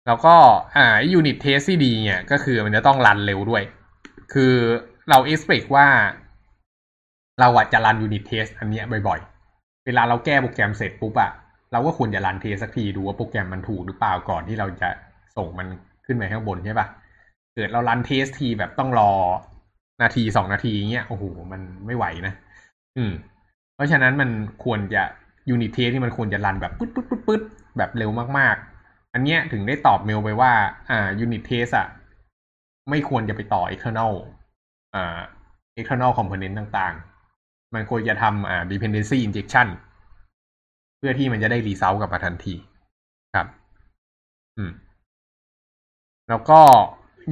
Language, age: Thai, 20-39